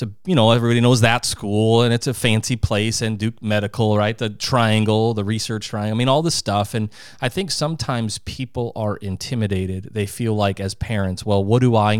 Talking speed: 210 wpm